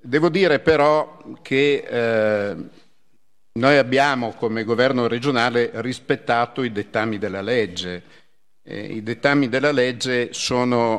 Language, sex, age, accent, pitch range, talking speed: Italian, male, 50-69, native, 105-125 Hz, 115 wpm